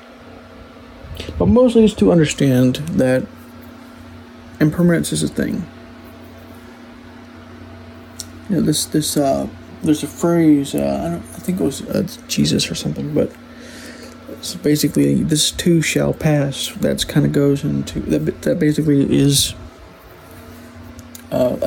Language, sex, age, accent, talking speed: English, male, 50-69, American, 125 wpm